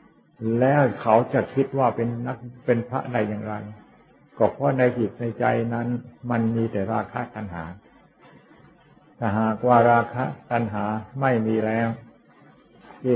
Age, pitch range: 60-79, 105-120 Hz